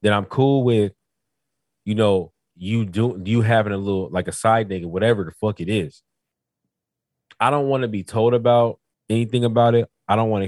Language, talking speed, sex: English, 200 wpm, male